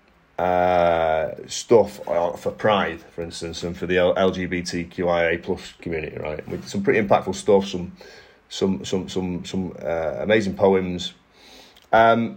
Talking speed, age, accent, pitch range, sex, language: 135 wpm, 30-49, British, 85-115 Hz, male, English